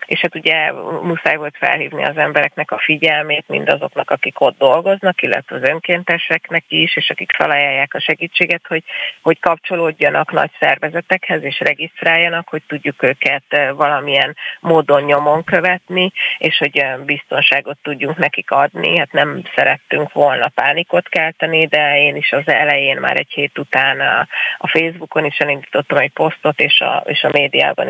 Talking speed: 150 wpm